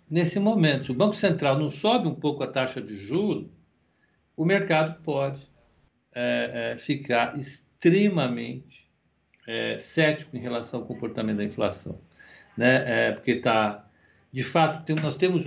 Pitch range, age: 110-155 Hz, 60-79